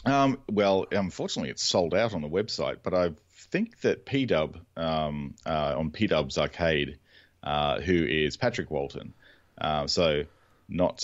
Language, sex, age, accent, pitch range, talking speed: English, male, 30-49, Australian, 75-100 Hz, 140 wpm